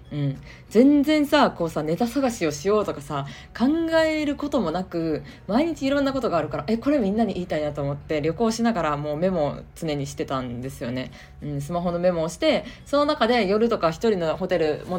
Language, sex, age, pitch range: Japanese, female, 20-39, 150-225 Hz